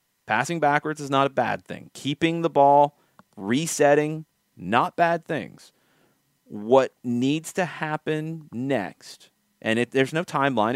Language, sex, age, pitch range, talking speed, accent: English, male, 30-49, 110-150 Hz, 130 wpm, American